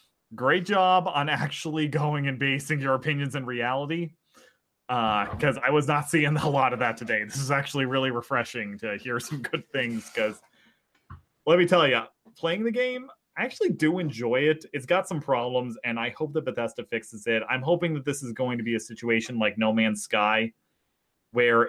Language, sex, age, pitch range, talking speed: English, male, 20-39, 115-155 Hz, 195 wpm